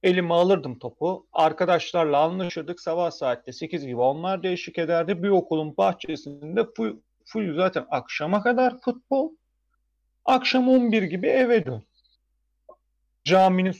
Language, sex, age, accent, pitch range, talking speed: Turkish, male, 40-59, native, 125-180 Hz, 120 wpm